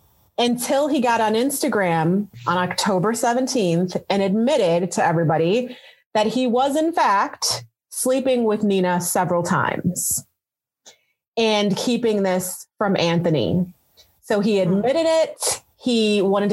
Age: 30-49